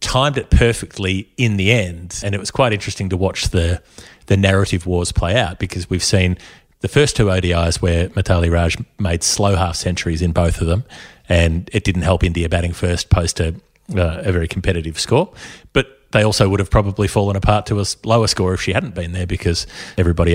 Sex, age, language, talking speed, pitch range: male, 30-49, English, 205 wpm, 90-105 Hz